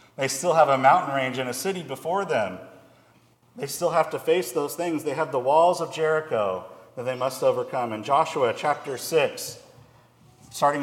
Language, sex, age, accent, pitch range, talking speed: English, male, 40-59, American, 135-170 Hz, 185 wpm